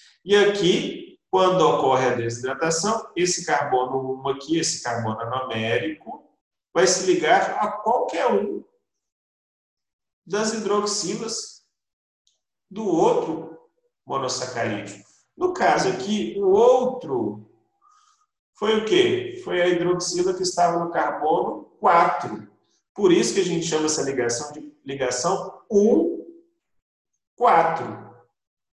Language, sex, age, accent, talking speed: Portuguese, male, 40-59, Brazilian, 105 wpm